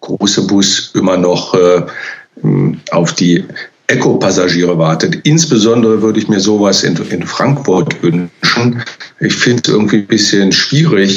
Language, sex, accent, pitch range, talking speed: German, male, German, 95-110 Hz, 140 wpm